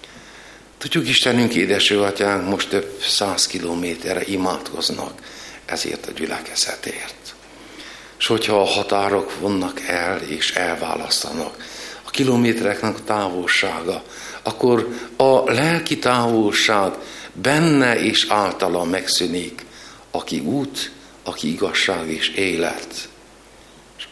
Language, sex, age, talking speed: Hungarian, male, 60-79, 95 wpm